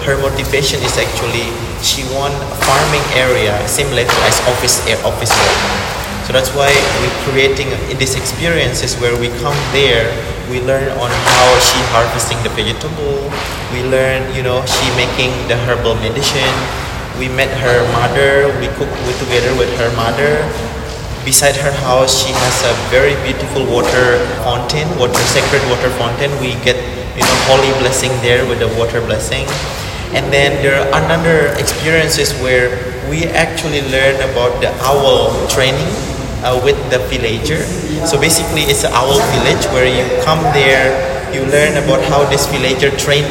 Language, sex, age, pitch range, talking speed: English, male, 20-39, 125-145 Hz, 160 wpm